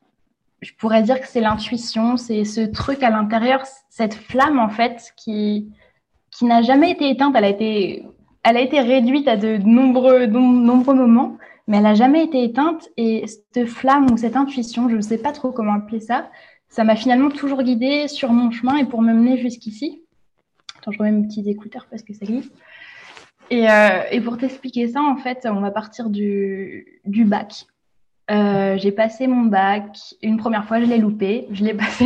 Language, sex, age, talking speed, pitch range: French, female, 20-39, 195 wpm, 205-245 Hz